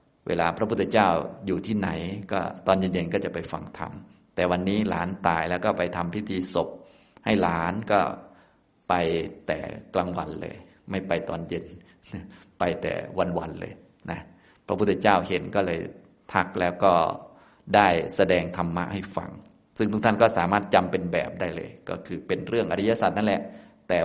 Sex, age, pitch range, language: male, 20-39, 90-105 Hz, Thai